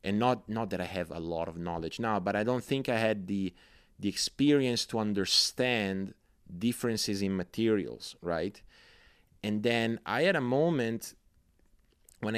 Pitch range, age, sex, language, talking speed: 90-115 Hz, 30-49, male, English, 160 wpm